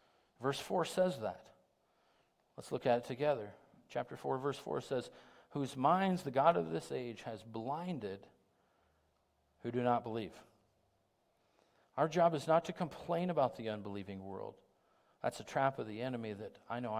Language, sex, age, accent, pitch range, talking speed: English, male, 50-69, American, 110-150 Hz, 160 wpm